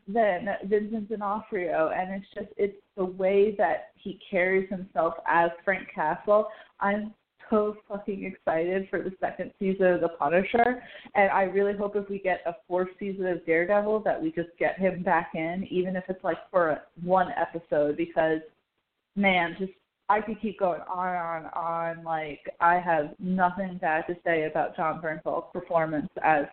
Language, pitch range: English, 165-190 Hz